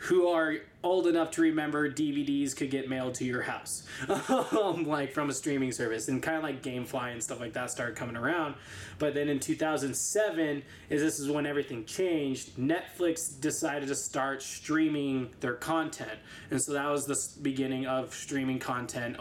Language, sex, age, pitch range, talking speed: English, male, 20-39, 135-160 Hz, 175 wpm